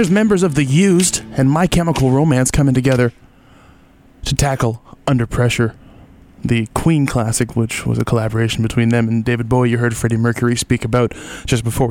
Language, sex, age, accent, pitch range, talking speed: English, male, 20-39, American, 115-135 Hz, 175 wpm